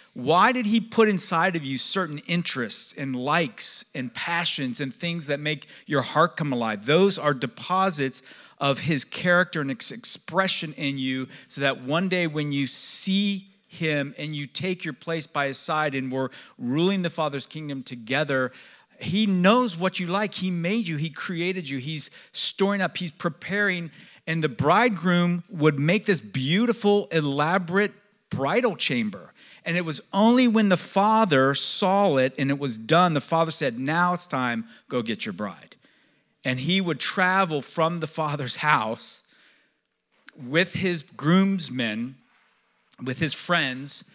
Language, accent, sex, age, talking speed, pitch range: English, American, male, 50-69, 160 wpm, 140-190 Hz